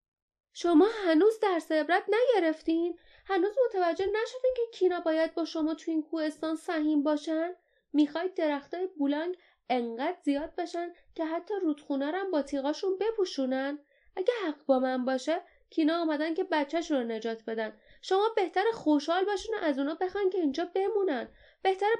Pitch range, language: 220-335 Hz, Persian